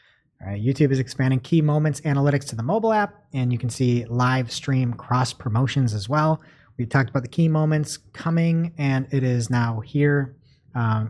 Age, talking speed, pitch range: 30-49, 180 wpm, 120-155 Hz